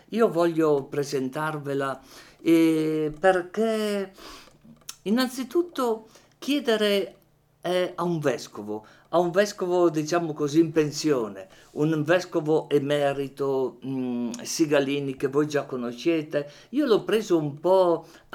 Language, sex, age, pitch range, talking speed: Italian, male, 50-69, 140-190 Hz, 105 wpm